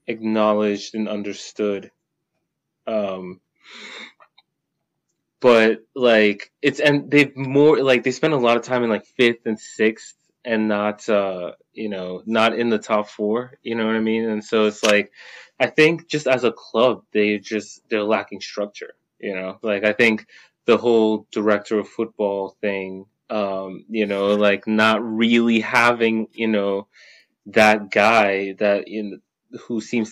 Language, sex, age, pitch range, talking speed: English, male, 20-39, 100-115 Hz, 155 wpm